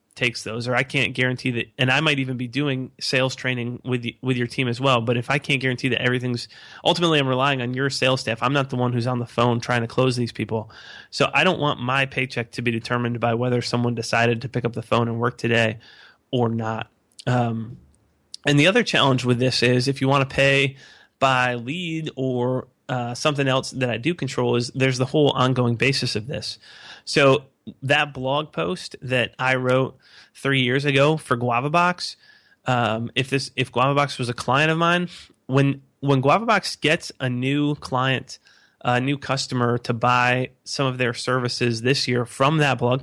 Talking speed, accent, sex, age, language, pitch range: 200 wpm, American, male, 30-49, English, 120-140 Hz